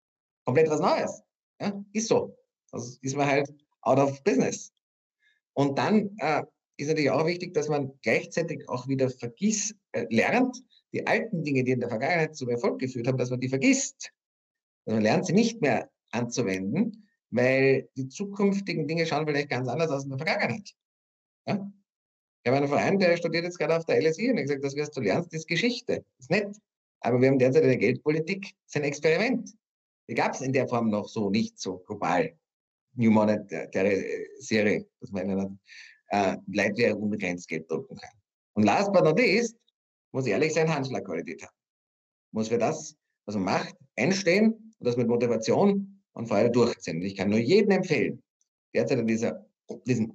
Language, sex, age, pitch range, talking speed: German, male, 50-69, 125-205 Hz, 190 wpm